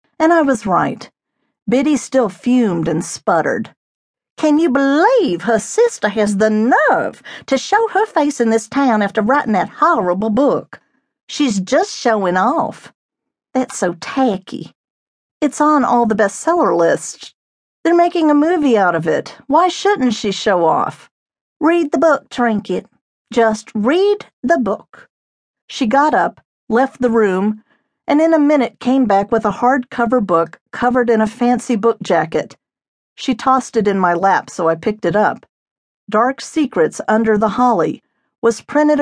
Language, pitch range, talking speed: English, 215-285 Hz, 155 wpm